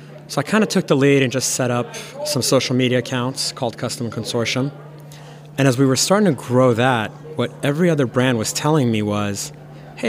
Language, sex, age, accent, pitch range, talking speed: English, male, 30-49, American, 125-155 Hz, 210 wpm